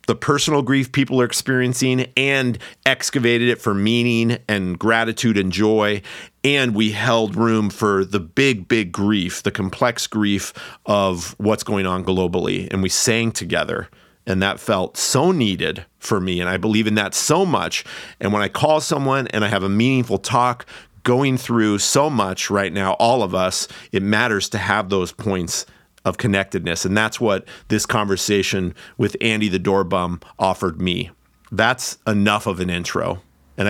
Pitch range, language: 100-120 Hz, English